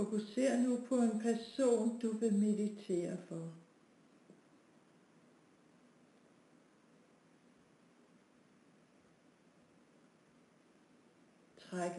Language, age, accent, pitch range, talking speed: Danish, 60-79, native, 195-220 Hz, 50 wpm